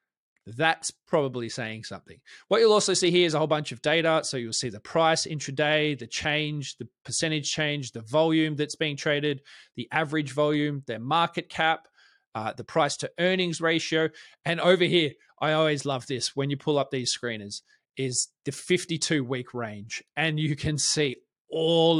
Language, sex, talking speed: English, male, 185 wpm